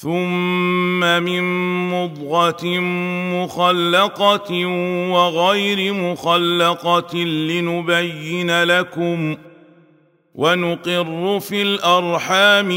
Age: 40-59